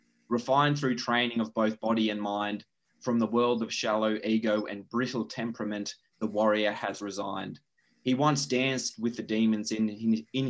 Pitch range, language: 105-120 Hz, English